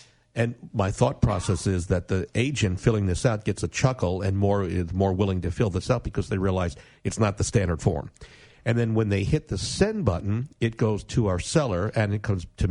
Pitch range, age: 95-120 Hz, 50-69